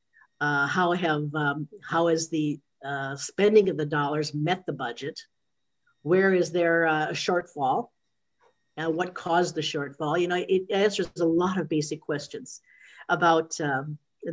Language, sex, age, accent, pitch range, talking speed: English, female, 50-69, American, 155-205 Hz, 150 wpm